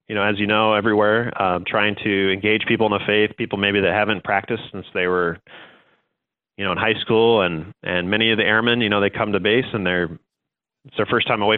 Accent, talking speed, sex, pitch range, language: American, 240 wpm, male, 95-110 Hz, English